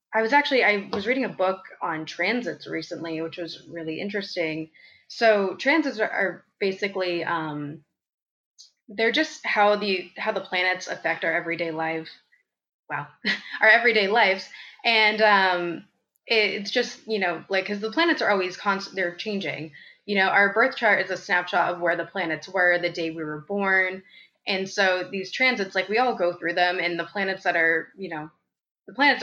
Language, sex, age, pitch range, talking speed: English, female, 20-39, 170-210 Hz, 180 wpm